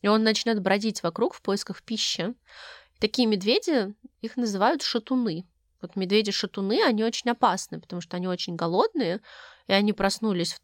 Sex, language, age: female, Russian, 20-39